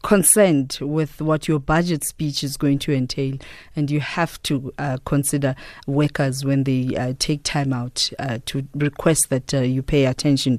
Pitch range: 135-160 Hz